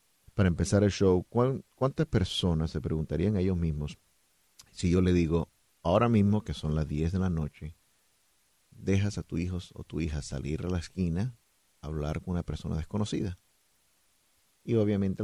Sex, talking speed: male, 170 wpm